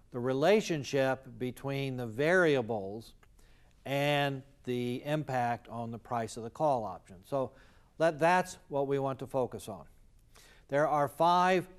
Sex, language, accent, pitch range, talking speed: male, English, American, 115-150 Hz, 130 wpm